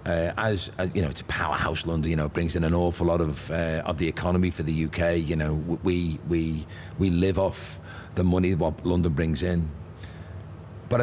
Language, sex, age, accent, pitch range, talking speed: English, male, 40-59, British, 85-105 Hz, 205 wpm